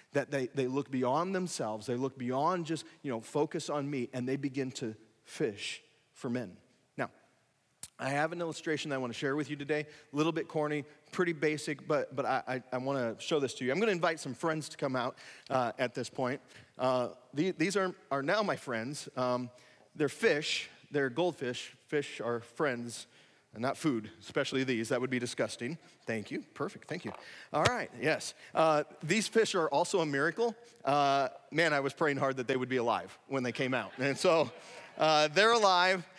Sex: male